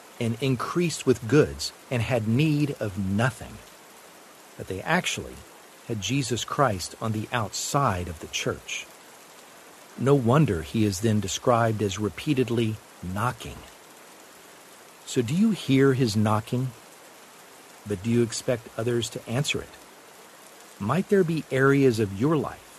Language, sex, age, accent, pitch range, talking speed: English, male, 50-69, American, 110-140 Hz, 135 wpm